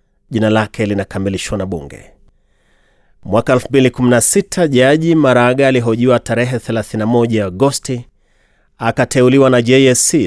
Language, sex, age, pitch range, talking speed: Swahili, male, 30-49, 110-135 Hz, 95 wpm